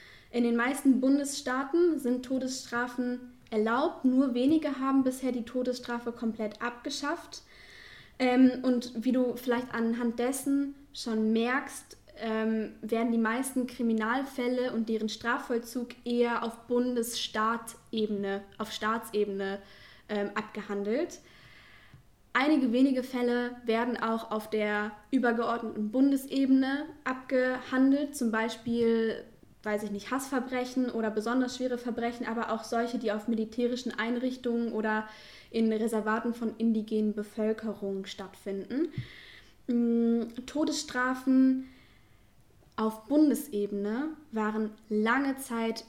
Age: 10-29